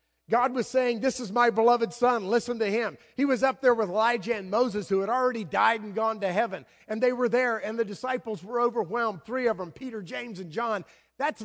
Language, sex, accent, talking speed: English, male, American, 230 wpm